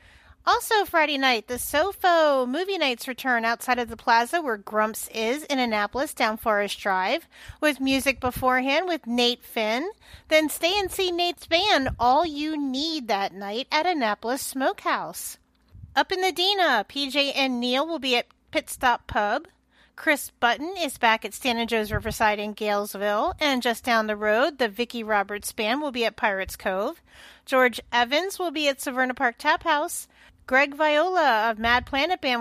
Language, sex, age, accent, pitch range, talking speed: English, female, 40-59, American, 235-310 Hz, 170 wpm